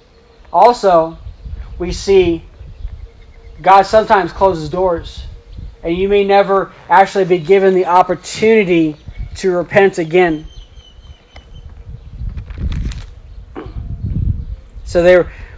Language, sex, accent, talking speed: English, male, American, 75 wpm